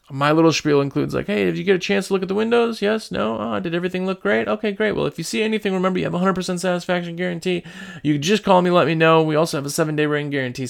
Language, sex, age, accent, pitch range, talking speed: English, male, 30-49, American, 145-200 Hz, 290 wpm